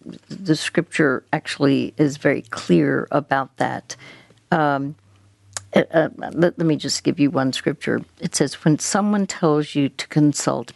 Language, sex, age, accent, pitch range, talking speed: English, female, 60-79, American, 140-165 Hz, 145 wpm